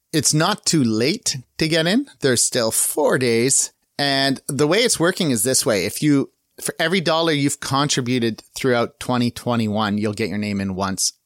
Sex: male